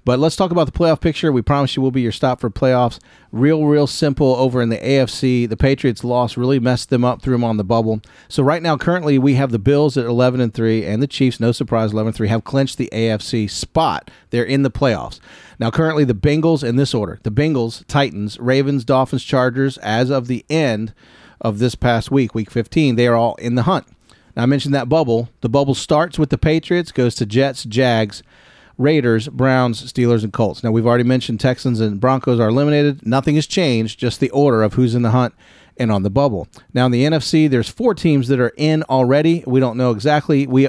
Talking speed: 220 wpm